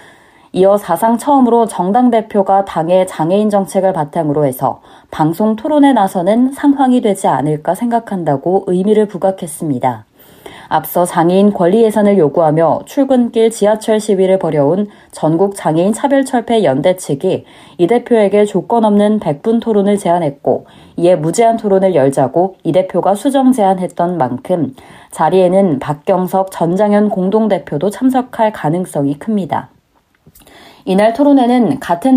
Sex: female